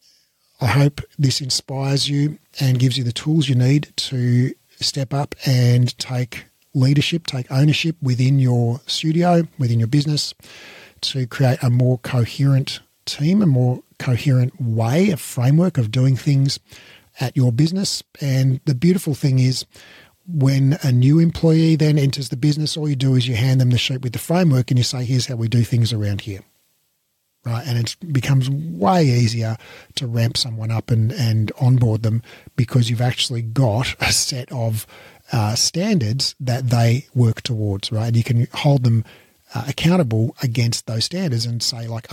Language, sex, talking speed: English, male, 170 wpm